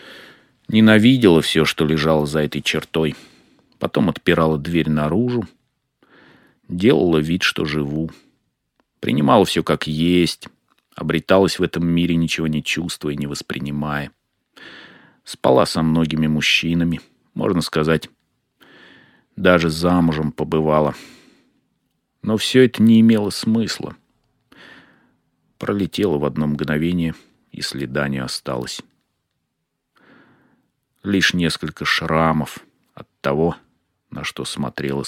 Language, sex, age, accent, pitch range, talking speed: Russian, male, 30-49, native, 75-95 Hz, 105 wpm